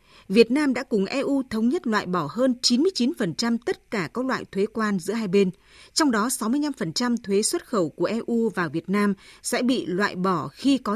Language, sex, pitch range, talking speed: Vietnamese, female, 190-240 Hz, 205 wpm